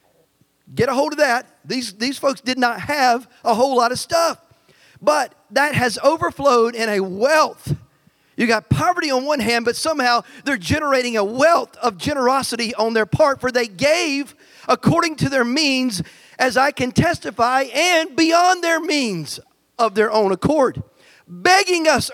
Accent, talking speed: American, 165 wpm